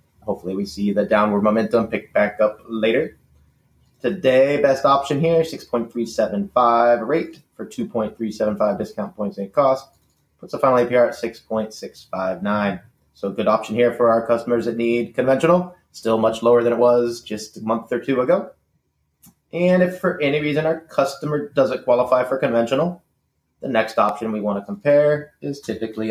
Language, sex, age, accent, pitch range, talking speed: English, male, 30-49, American, 100-140 Hz, 160 wpm